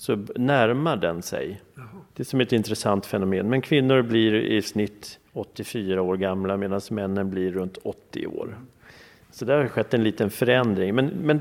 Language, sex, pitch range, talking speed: Swedish, male, 100-120 Hz, 175 wpm